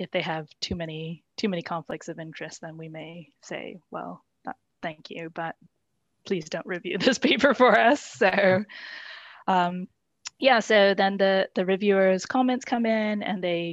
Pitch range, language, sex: 170-195 Hz, English, female